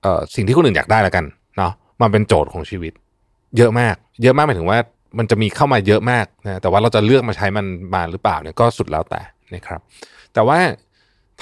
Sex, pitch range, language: male, 95-125 Hz, Thai